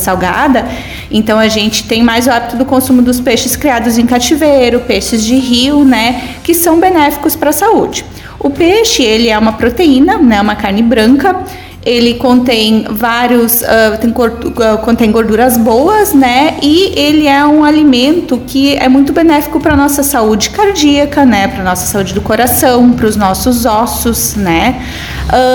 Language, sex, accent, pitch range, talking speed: Portuguese, female, Brazilian, 225-295 Hz, 165 wpm